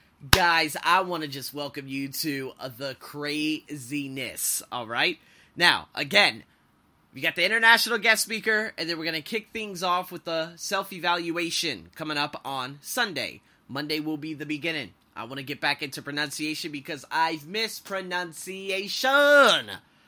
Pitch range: 150-215 Hz